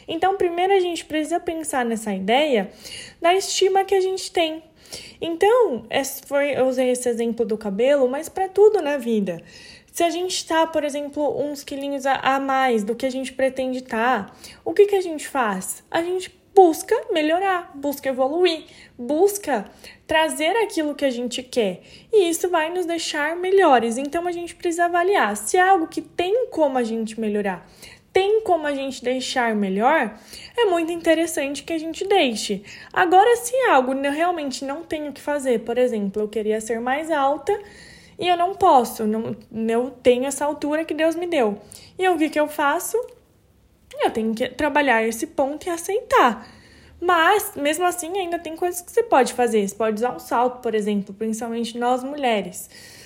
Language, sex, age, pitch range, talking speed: Portuguese, female, 10-29, 245-350 Hz, 180 wpm